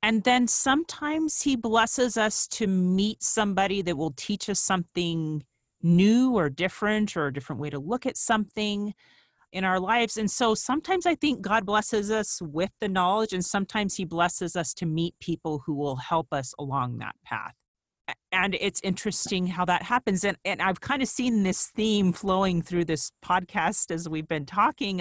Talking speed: 180 wpm